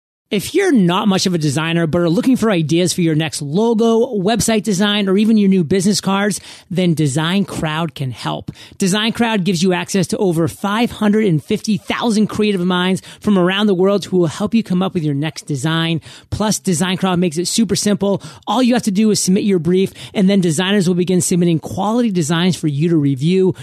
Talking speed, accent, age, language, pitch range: 200 wpm, American, 30-49, English, 165-205 Hz